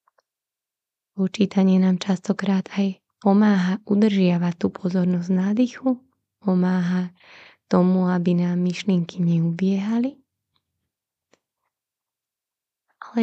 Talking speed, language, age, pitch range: 75 wpm, Slovak, 20-39, 185-220 Hz